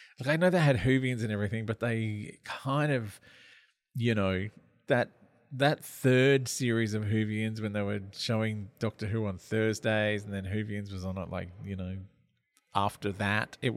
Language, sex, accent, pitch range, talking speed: English, male, Australian, 100-130 Hz, 175 wpm